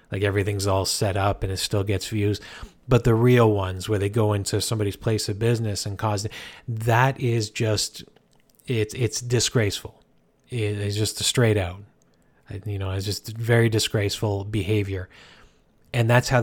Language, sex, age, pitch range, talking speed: English, male, 30-49, 100-115 Hz, 170 wpm